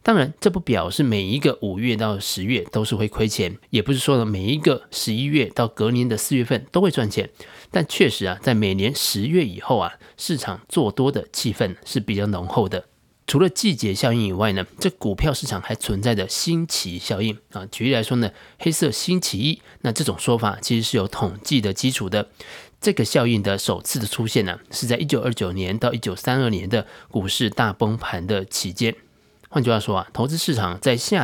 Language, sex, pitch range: Chinese, male, 105-130 Hz